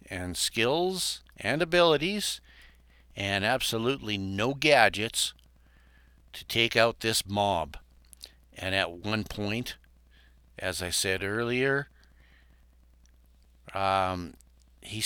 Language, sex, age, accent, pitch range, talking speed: English, male, 60-79, American, 80-115 Hz, 90 wpm